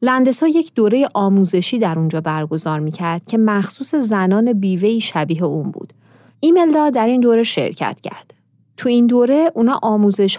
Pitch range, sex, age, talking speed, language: 175-240 Hz, female, 30-49, 150 wpm, Persian